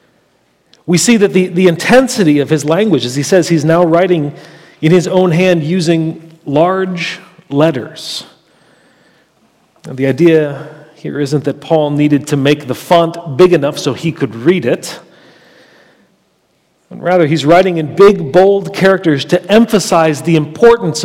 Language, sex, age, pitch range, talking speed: English, male, 40-59, 155-190 Hz, 145 wpm